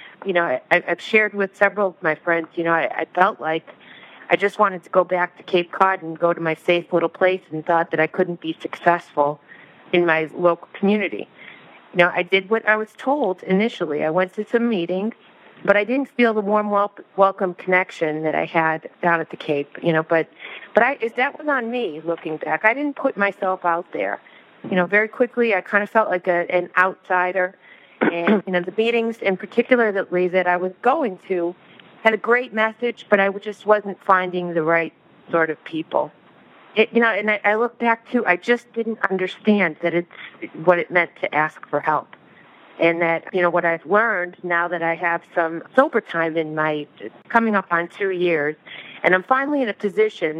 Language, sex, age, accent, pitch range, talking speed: English, female, 40-59, American, 165-210 Hz, 210 wpm